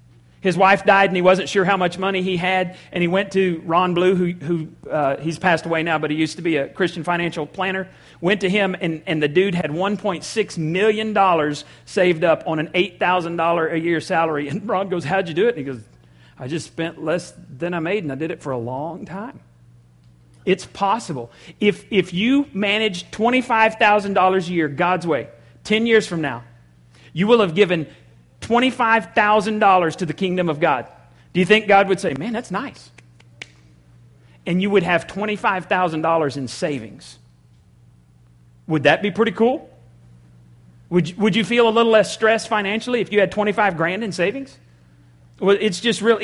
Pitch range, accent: 140-205 Hz, American